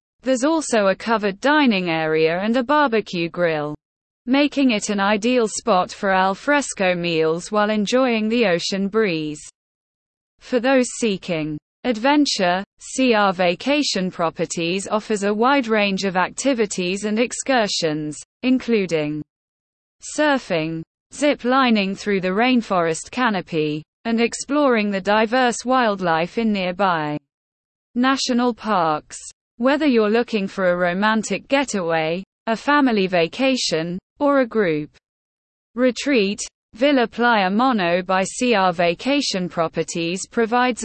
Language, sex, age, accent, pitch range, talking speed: English, female, 20-39, British, 175-250 Hz, 115 wpm